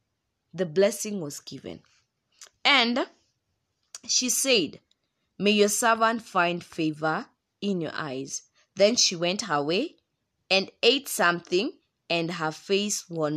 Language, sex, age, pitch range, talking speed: English, female, 20-39, 155-210 Hz, 115 wpm